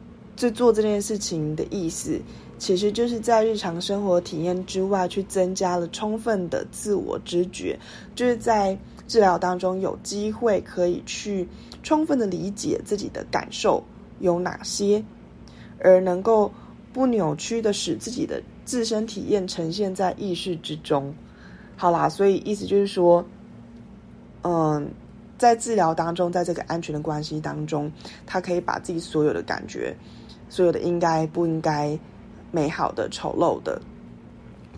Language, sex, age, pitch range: Chinese, female, 20-39, 160-205 Hz